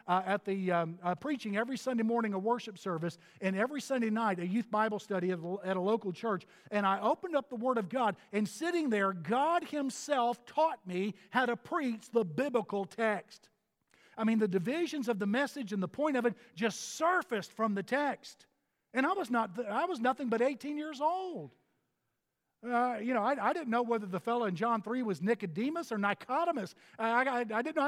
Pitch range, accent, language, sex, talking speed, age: 200-270 Hz, American, English, male, 210 wpm, 50-69